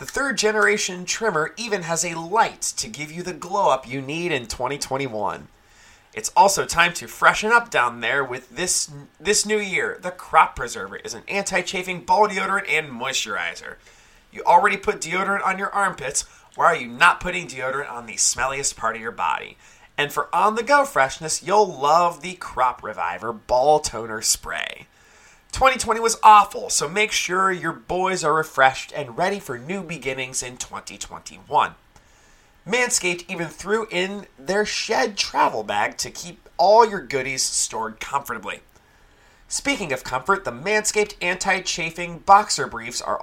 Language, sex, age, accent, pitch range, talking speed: English, male, 30-49, American, 145-205 Hz, 155 wpm